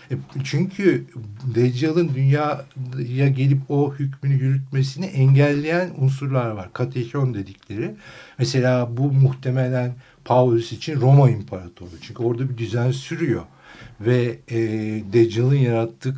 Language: Turkish